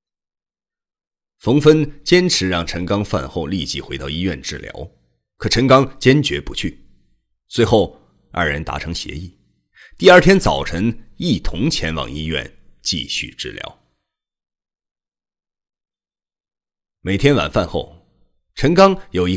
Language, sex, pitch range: Chinese, male, 75-115 Hz